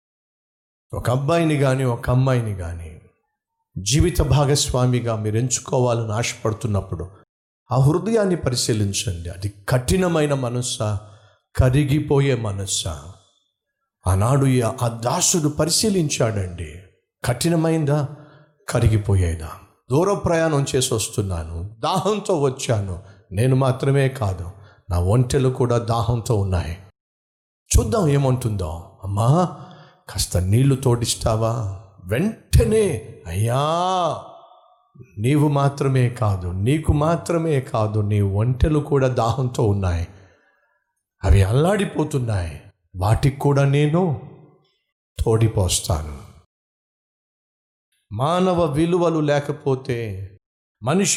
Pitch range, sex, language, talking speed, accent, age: 100-150 Hz, male, Telugu, 70 wpm, native, 50-69